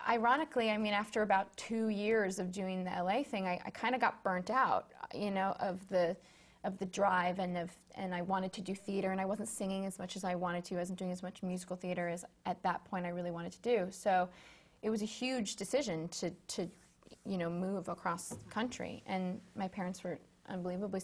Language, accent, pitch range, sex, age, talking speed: English, American, 180-220 Hz, female, 20-39, 220 wpm